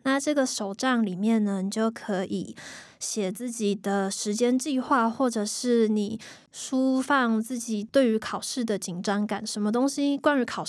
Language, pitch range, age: Chinese, 205-245 Hz, 20-39